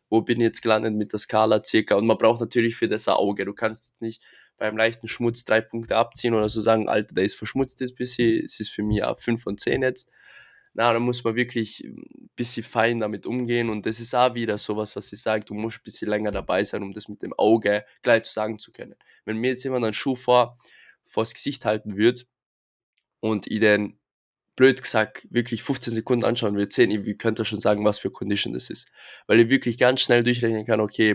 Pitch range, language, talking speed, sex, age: 105-120 Hz, German, 235 wpm, male, 20-39